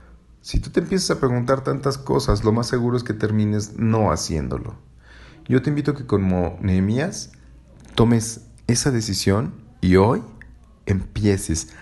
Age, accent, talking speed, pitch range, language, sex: 40-59, Mexican, 145 wpm, 90-110 Hz, Spanish, male